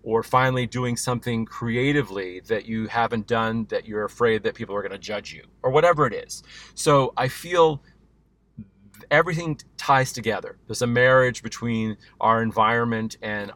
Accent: American